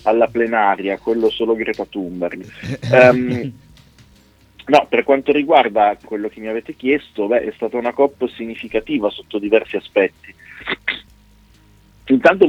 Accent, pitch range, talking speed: native, 100-115 Hz, 125 wpm